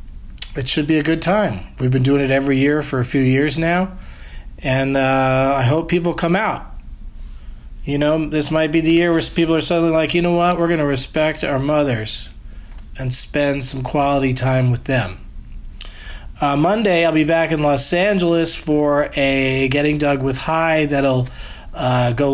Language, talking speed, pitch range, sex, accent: English, 185 wpm, 135-165 Hz, male, American